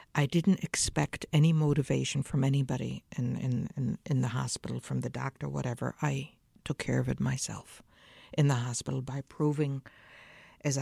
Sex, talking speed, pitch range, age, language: female, 160 wpm, 130-160 Hz, 60-79, English